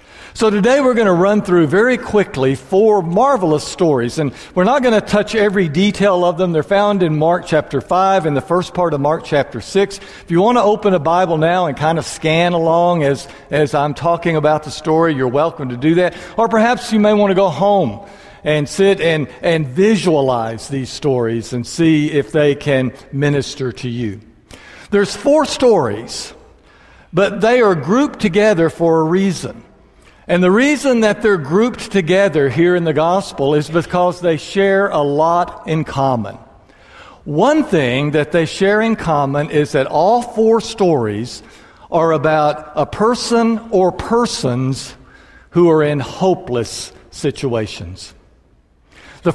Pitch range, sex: 145-200 Hz, male